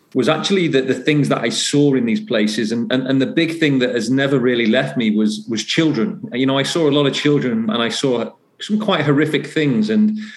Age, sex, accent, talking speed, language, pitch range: 40-59, male, British, 245 wpm, English, 120-150 Hz